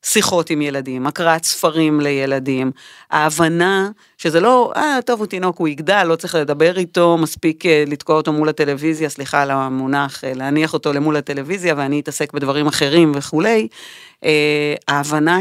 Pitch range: 145-175 Hz